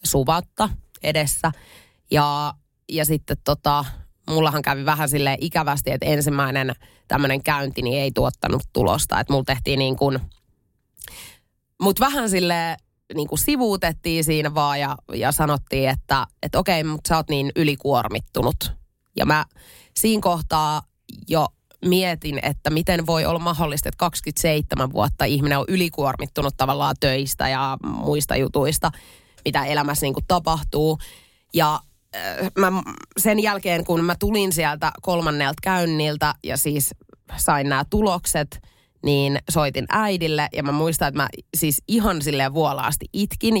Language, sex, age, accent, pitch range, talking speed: Finnish, female, 30-49, native, 140-170 Hz, 130 wpm